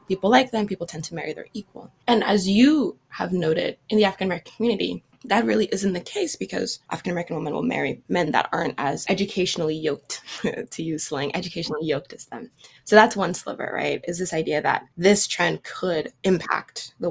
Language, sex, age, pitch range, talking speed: English, female, 20-39, 160-215 Hz, 195 wpm